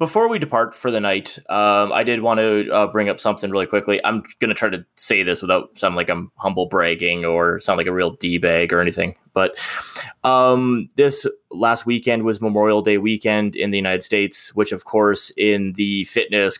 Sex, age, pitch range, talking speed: male, 20-39, 100-115 Hz, 205 wpm